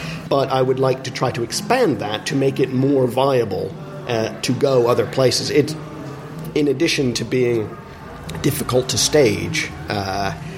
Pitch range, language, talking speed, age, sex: 115-150 Hz, English, 160 wpm, 40-59, male